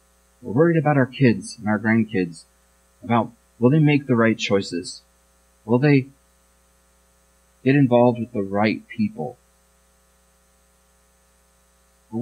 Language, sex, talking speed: English, male, 120 wpm